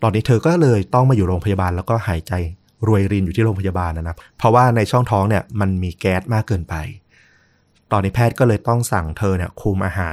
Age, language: 30-49, Thai